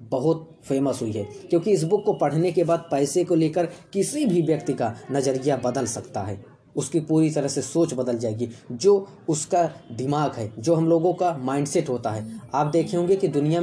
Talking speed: 200 wpm